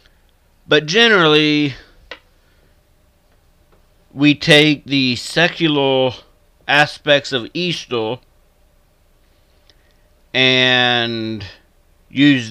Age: 30-49